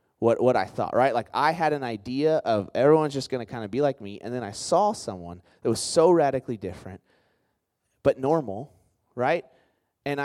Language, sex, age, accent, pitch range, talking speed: English, male, 30-49, American, 105-135 Hz, 200 wpm